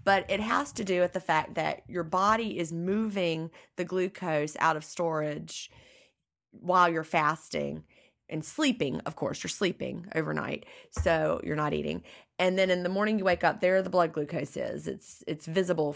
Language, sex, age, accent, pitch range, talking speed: English, female, 30-49, American, 160-195 Hz, 185 wpm